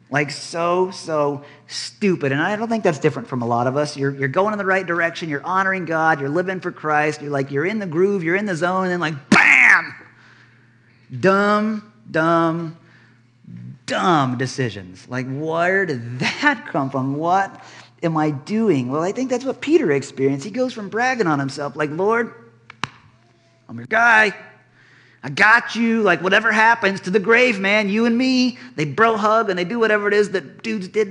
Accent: American